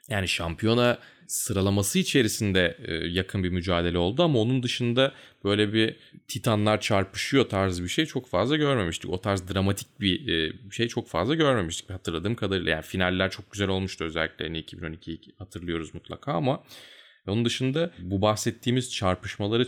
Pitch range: 95-135 Hz